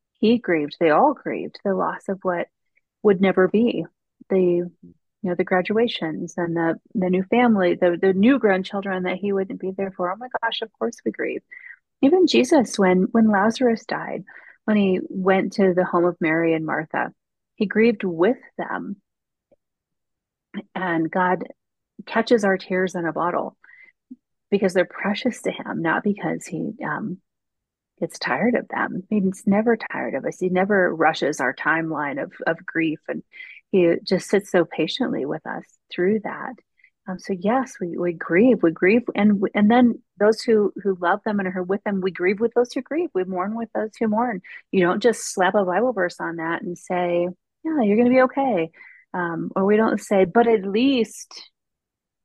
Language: English